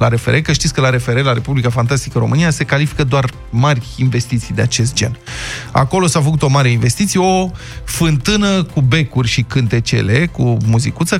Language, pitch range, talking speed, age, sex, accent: Romanian, 125-170 Hz, 175 wpm, 20-39, male, native